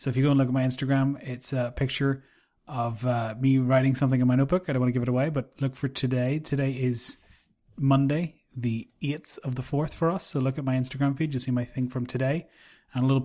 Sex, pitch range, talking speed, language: male, 125-145 Hz, 255 wpm, English